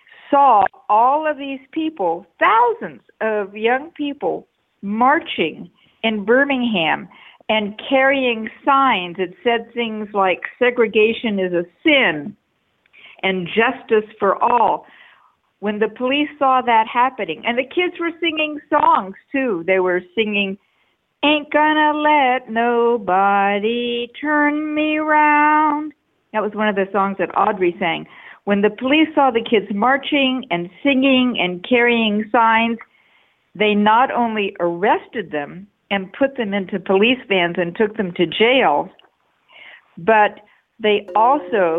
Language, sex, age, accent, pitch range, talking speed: English, female, 50-69, American, 195-260 Hz, 130 wpm